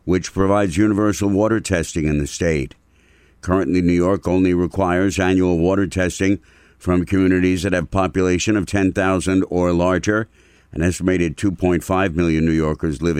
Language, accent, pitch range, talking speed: English, American, 80-95 Hz, 150 wpm